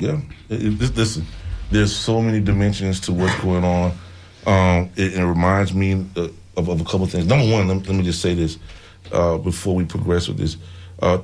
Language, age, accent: English, 30-49, American